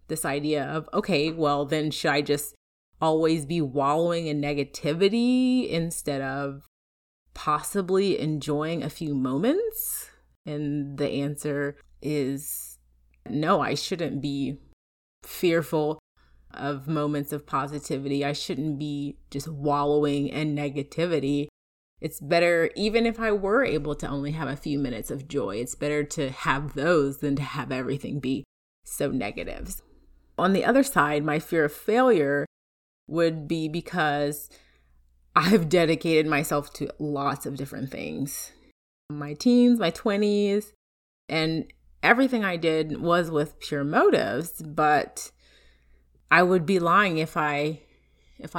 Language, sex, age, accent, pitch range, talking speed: English, female, 30-49, American, 140-165 Hz, 130 wpm